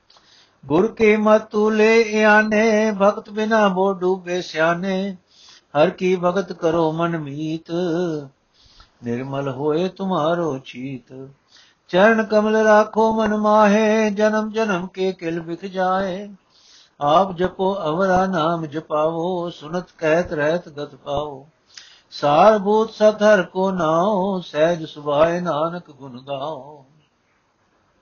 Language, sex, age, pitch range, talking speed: Punjabi, male, 60-79, 150-190 Hz, 110 wpm